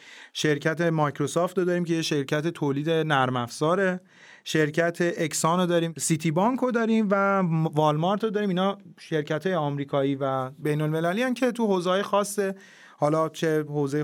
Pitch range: 150-180 Hz